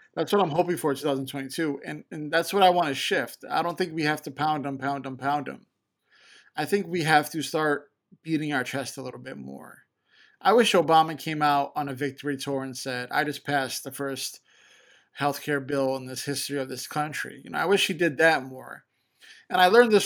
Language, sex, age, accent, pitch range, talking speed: English, male, 20-39, American, 135-160 Hz, 230 wpm